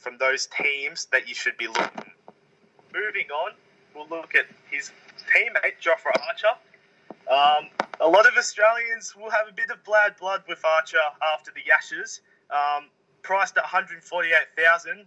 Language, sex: English, male